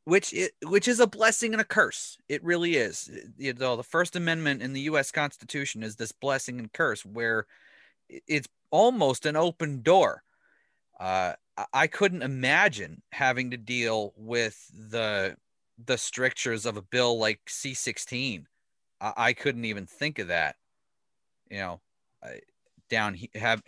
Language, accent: English, American